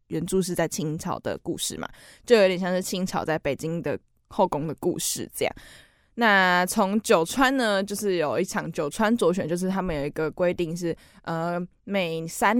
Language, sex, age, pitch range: Chinese, female, 10-29, 160-195 Hz